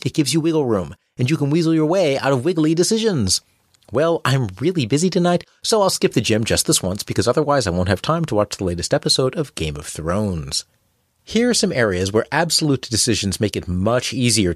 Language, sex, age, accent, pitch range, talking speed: English, male, 30-49, American, 100-135 Hz, 225 wpm